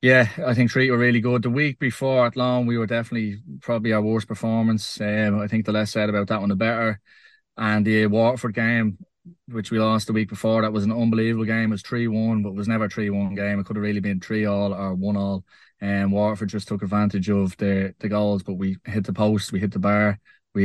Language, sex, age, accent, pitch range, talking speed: English, male, 20-39, Irish, 100-115 Hz, 255 wpm